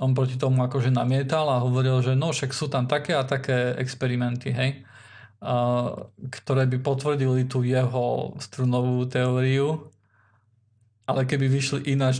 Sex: male